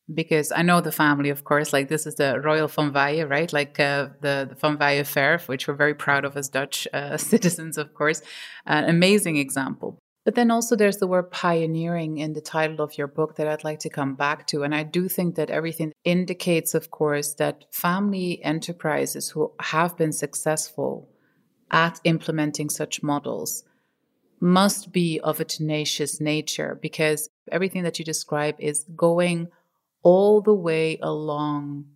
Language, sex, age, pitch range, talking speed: English, female, 30-49, 150-170 Hz, 175 wpm